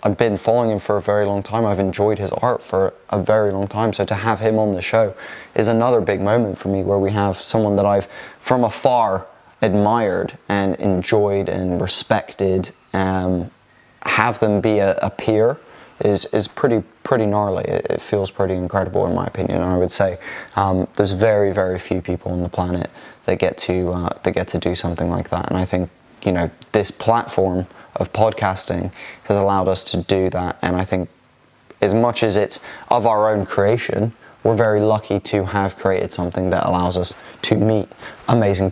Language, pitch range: English, 95-105 Hz